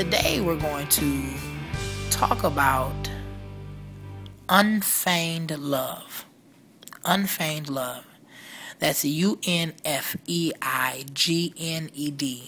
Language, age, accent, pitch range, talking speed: English, 30-49, American, 140-185 Hz, 60 wpm